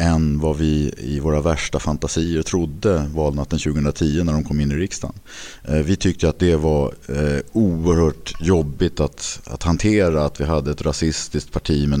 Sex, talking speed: male, 165 wpm